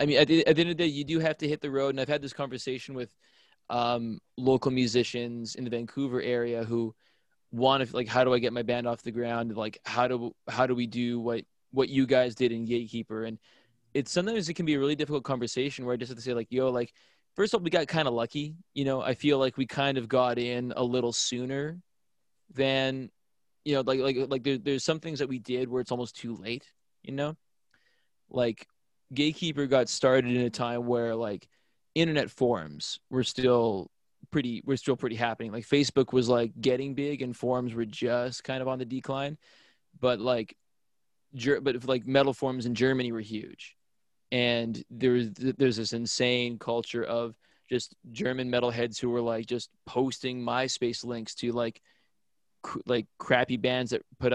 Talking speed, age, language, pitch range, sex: 205 wpm, 20-39, English, 120-135 Hz, male